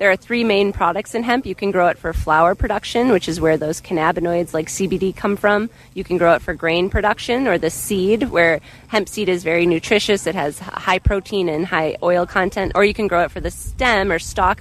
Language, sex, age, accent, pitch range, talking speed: English, female, 20-39, American, 170-205 Hz, 235 wpm